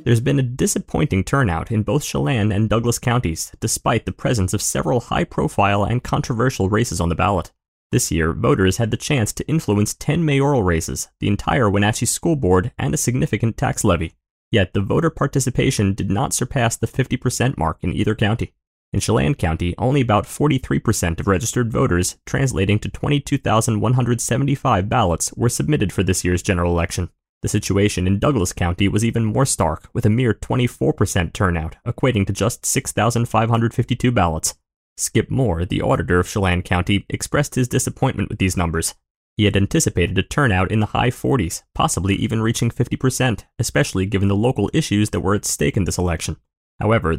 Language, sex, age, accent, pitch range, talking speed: English, male, 30-49, American, 95-125 Hz, 170 wpm